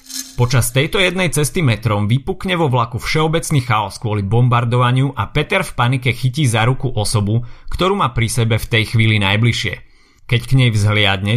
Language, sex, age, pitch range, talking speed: Slovak, male, 30-49, 110-130 Hz, 170 wpm